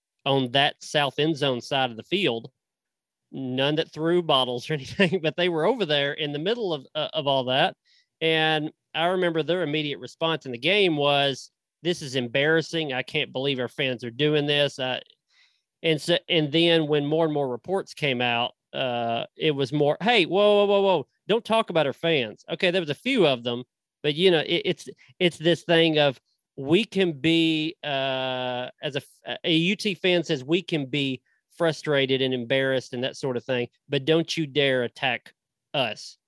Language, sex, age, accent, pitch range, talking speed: English, male, 40-59, American, 130-165 Hz, 195 wpm